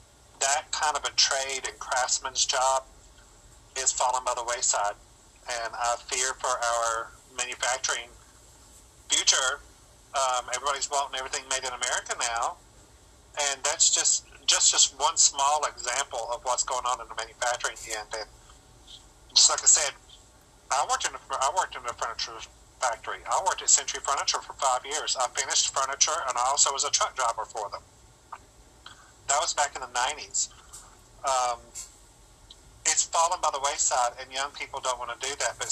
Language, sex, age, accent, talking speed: English, male, 40-59, American, 170 wpm